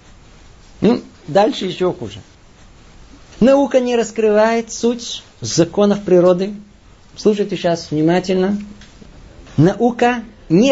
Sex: male